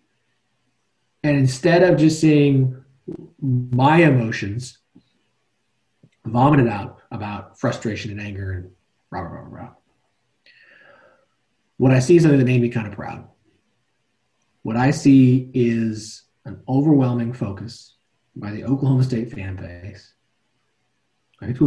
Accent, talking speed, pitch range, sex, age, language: American, 120 wpm, 110-130 Hz, male, 40-59, English